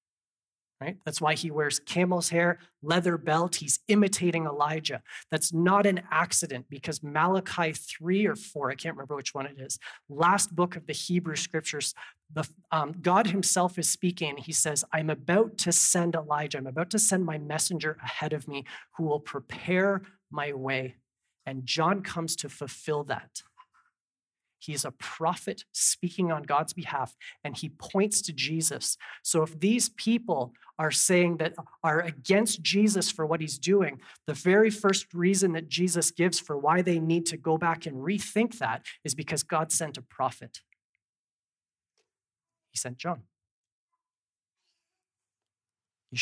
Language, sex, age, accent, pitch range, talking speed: English, male, 30-49, American, 135-175 Hz, 155 wpm